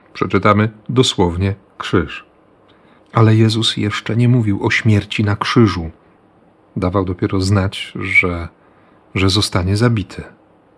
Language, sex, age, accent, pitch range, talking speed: Polish, male, 40-59, native, 100-110 Hz, 105 wpm